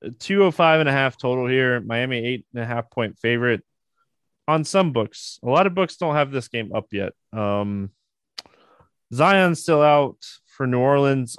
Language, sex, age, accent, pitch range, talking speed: English, male, 20-39, American, 120-155 Hz, 185 wpm